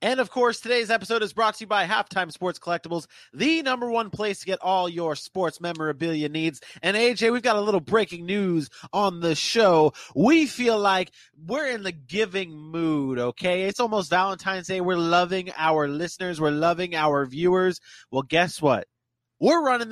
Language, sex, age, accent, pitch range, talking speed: English, male, 30-49, American, 170-220 Hz, 185 wpm